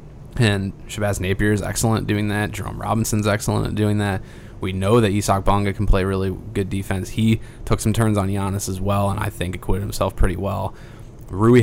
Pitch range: 95-110 Hz